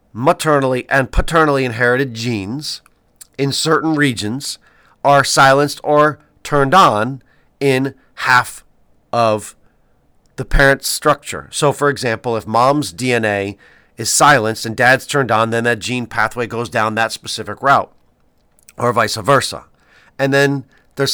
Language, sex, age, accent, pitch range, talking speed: English, male, 40-59, American, 115-150 Hz, 130 wpm